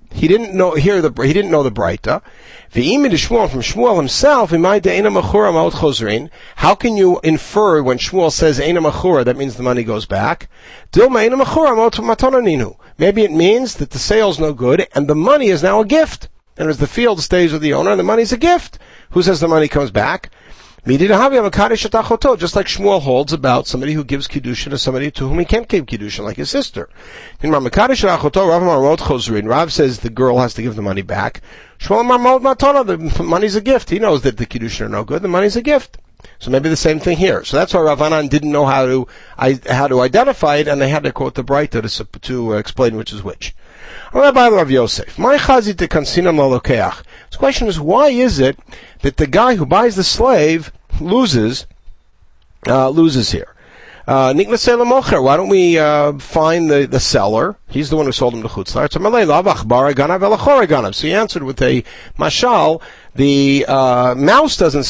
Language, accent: English, American